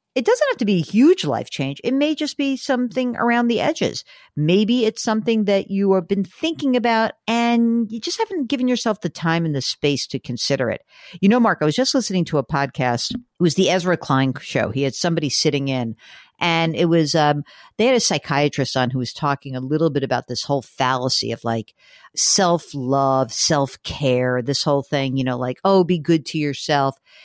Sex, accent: female, American